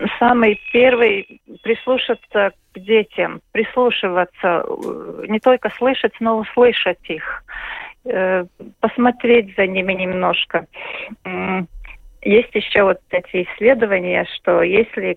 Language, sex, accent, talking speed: Russian, female, native, 90 wpm